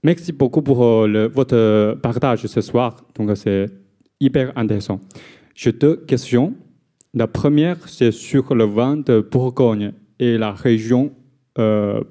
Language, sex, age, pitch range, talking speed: French, male, 30-49, 110-135 Hz, 135 wpm